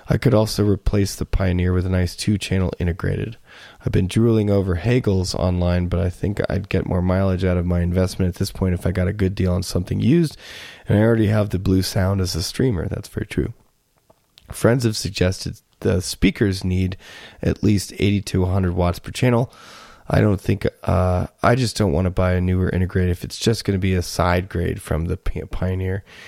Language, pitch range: English, 90-110 Hz